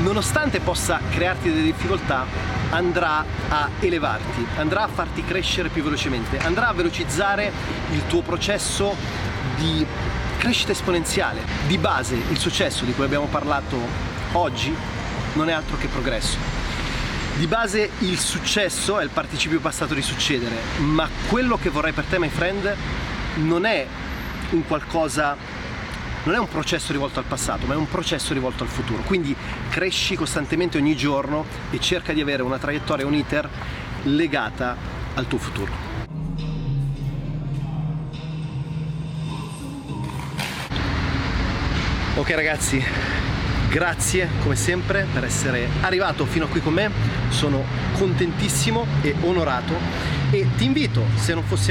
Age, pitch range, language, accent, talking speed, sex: 30-49, 100-155 Hz, Italian, native, 130 wpm, male